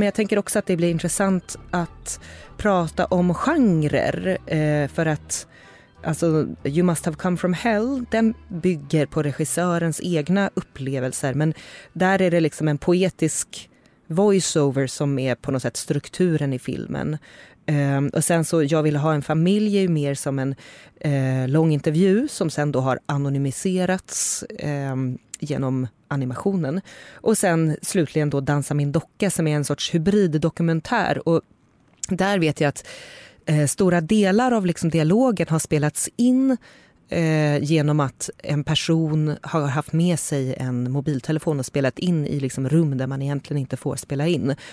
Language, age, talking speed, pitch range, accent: Swedish, 30-49, 150 wpm, 140-180 Hz, native